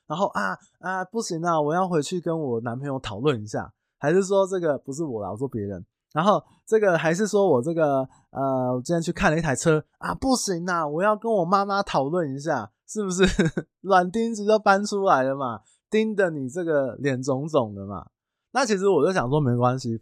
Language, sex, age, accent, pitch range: Chinese, male, 20-39, native, 110-165 Hz